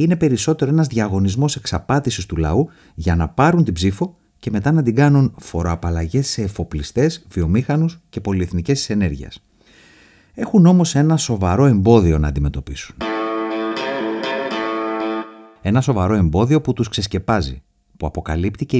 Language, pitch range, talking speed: Greek, 90-135 Hz, 130 wpm